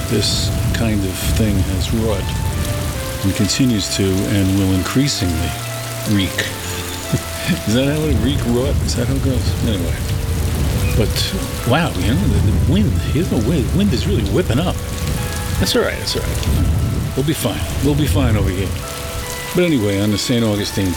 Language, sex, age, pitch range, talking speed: English, male, 50-69, 95-115 Hz, 170 wpm